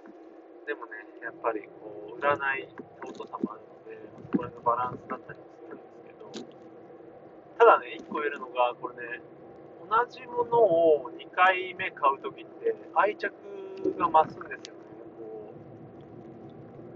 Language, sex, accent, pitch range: Japanese, male, native, 150-180 Hz